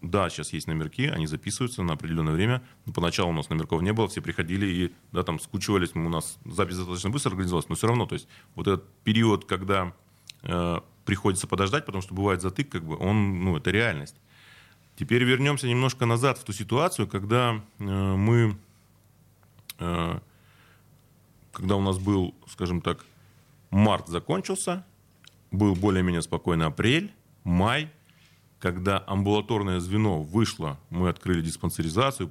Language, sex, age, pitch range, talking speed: Russian, male, 30-49, 90-115 Hz, 150 wpm